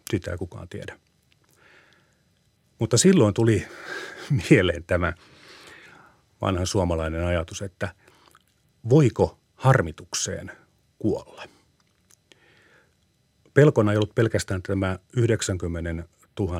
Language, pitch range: Finnish, 90-115 Hz